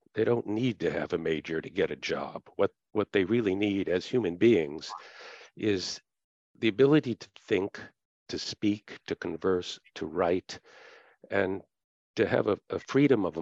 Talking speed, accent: 165 wpm, American